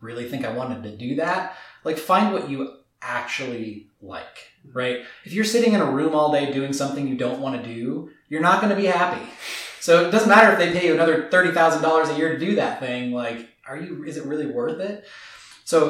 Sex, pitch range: male, 125-170 Hz